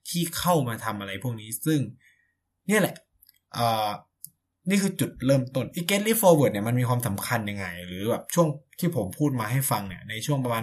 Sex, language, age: male, Thai, 20-39